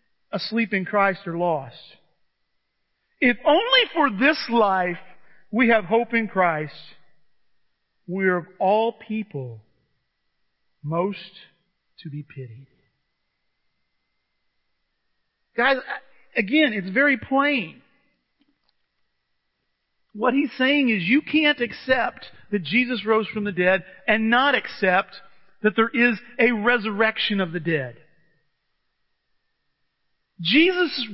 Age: 50-69